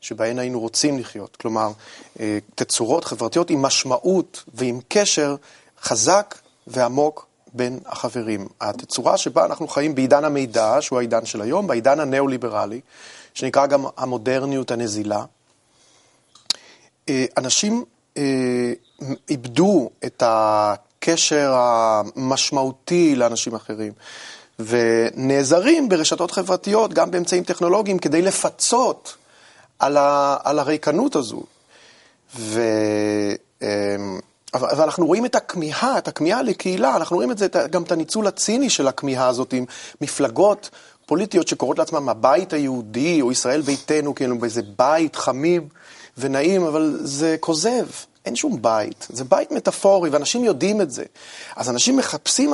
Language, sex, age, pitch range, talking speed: Hebrew, male, 30-49, 120-180 Hz, 115 wpm